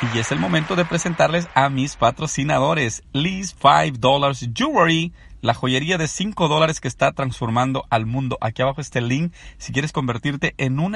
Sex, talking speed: male, 170 wpm